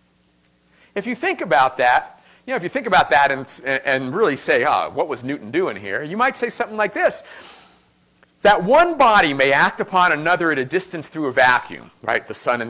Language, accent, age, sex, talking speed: English, American, 50-69, male, 215 wpm